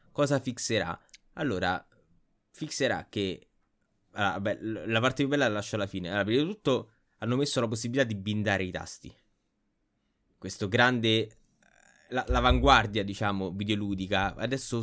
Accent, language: native, Italian